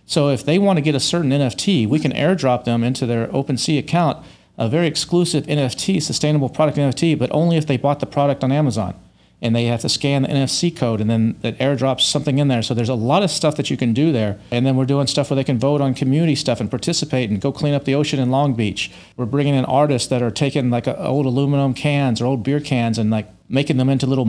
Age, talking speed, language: 40-59, 255 wpm, English